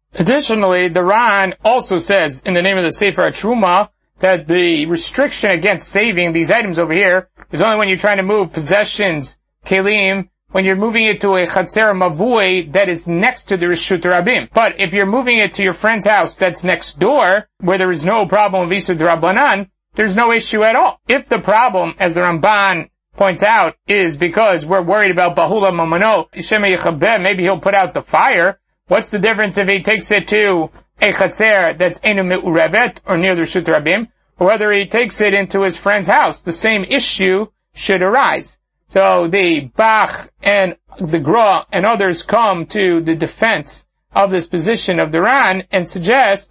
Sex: male